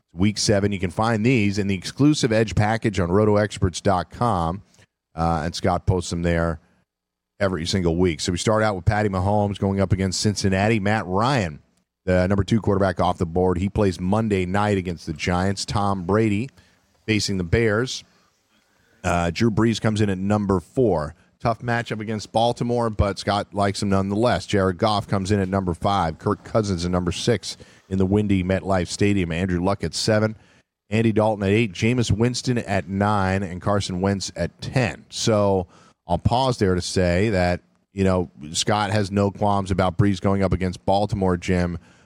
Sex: male